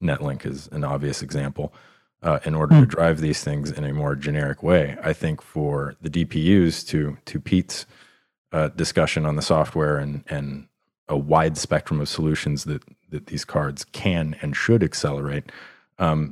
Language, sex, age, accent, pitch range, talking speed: English, male, 30-49, American, 75-85 Hz, 170 wpm